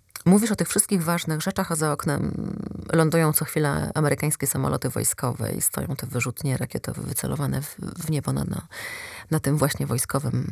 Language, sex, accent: Polish, female, native